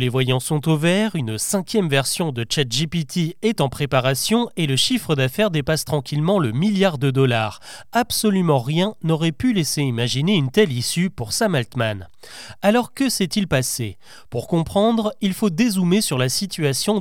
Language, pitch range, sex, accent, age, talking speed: French, 135-200 Hz, male, French, 30-49, 165 wpm